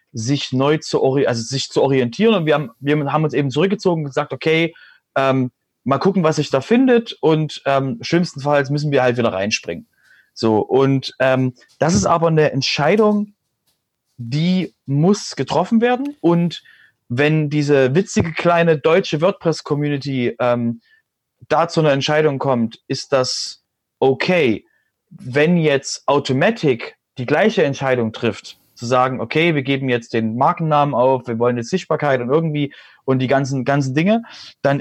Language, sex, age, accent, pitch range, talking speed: German, male, 30-49, German, 130-165 Hz, 155 wpm